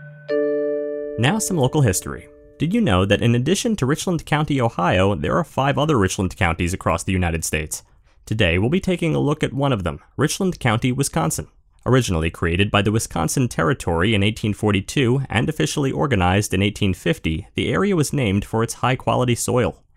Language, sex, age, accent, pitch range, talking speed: English, male, 30-49, American, 95-140 Hz, 175 wpm